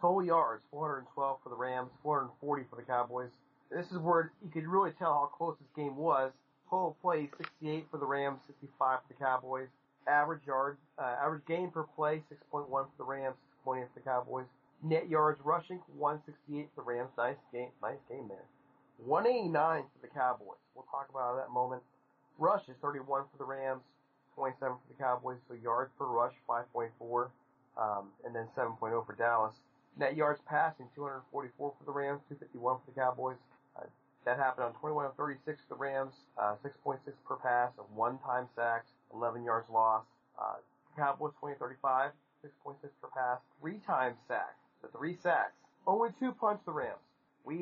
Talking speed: 165 wpm